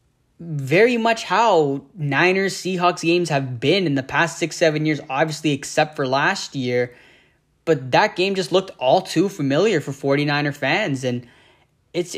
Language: English